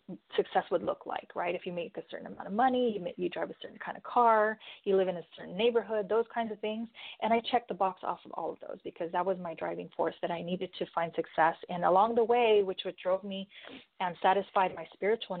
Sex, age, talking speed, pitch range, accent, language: female, 30-49, 255 wpm, 175-210 Hz, American, English